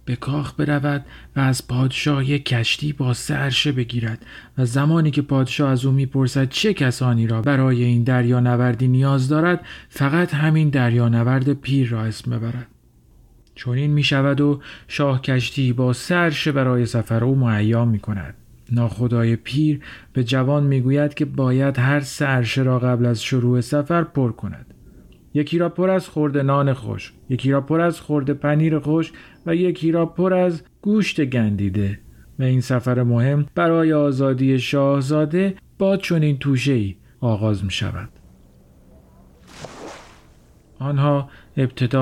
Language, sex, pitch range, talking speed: Persian, male, 120-145 Hz, 145 wpm